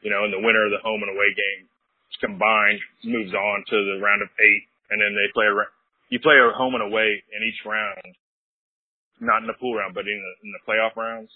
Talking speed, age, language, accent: 230 wpm, 20-39, English, American